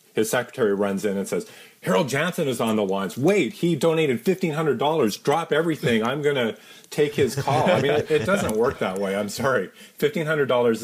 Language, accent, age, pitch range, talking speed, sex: English, American, 30-49, 105-130 Hz, 195 wpm, male